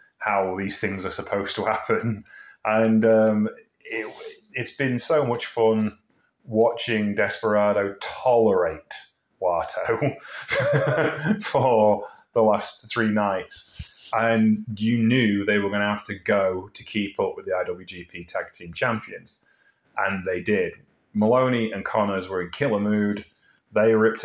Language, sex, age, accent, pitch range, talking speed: English, male, 30-49, British, 100-130 Hz, 135 wpm